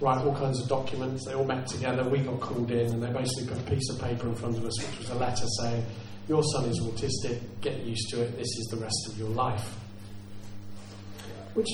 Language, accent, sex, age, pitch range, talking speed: English, British, male, 40-59, 105-145 Hz, 235 wpm